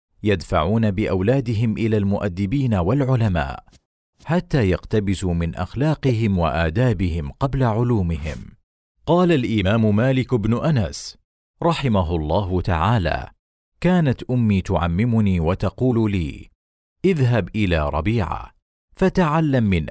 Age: 40-59